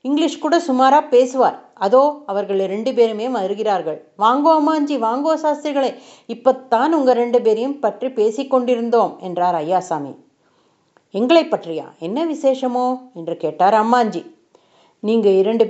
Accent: native